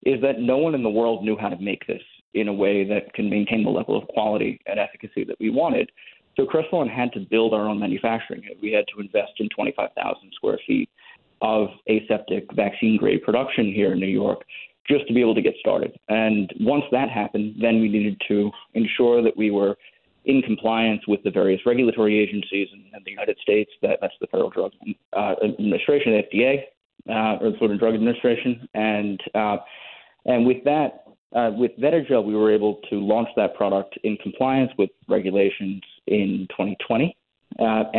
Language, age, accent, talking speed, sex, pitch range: English, 30-49, American, 190 wpm, male, 105-125 Hz